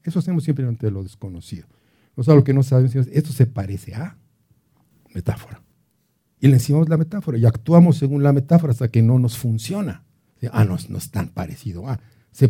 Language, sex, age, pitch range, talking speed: Spanish, male, 50-69, 105-135 Hz, 200 wpm